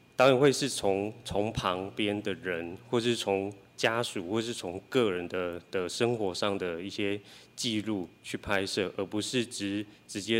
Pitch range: 95-115 Hz